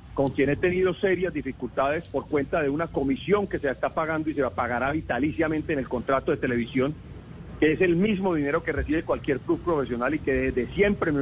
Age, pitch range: 40-59, 140-190 Hz